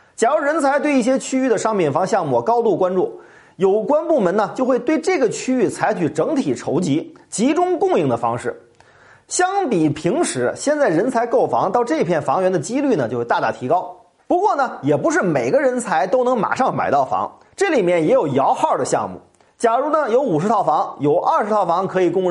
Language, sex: Chinese, male